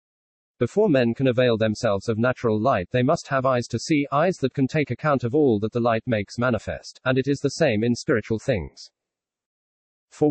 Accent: British